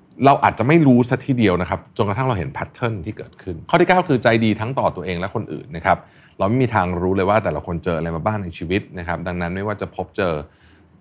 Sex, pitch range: male, 85-115 Hz